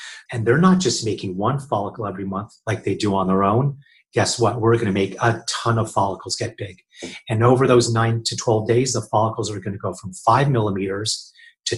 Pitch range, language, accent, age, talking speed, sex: 105-130 Hz, English, American, 40-59, 215 wpm, male